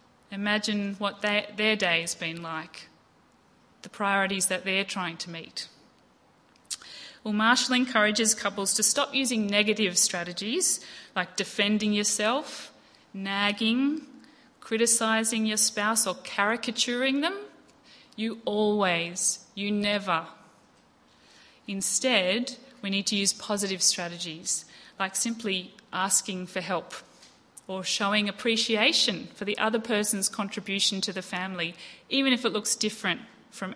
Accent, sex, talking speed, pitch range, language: Australian, female, 115 wpm, 190-225 Hz, English